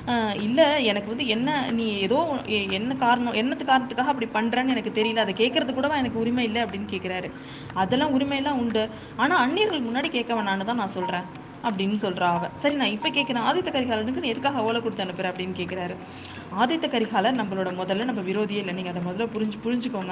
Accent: native